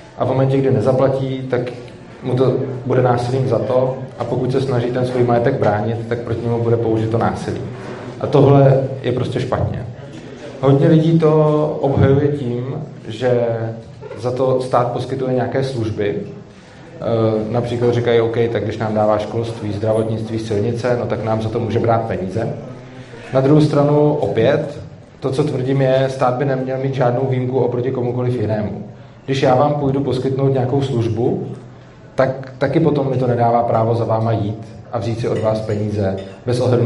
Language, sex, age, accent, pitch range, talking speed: Czech, male, 30-49, native, 115-135 Hz, 170 wpm